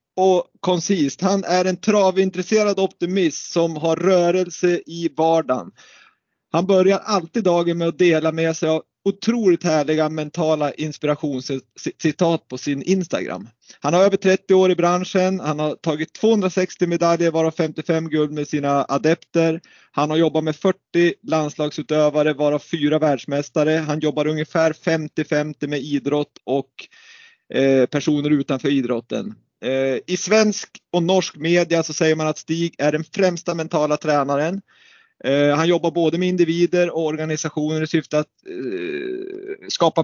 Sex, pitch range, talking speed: male, 150-180 Hz, 140 wpm